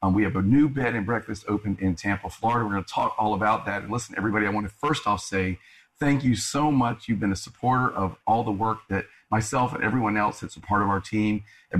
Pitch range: 95-120 Hz